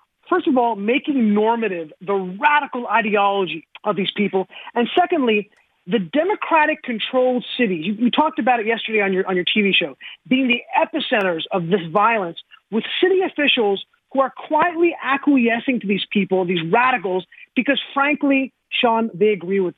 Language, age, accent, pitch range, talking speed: English, 30-49, American, 210-295 Hz, 160 wpm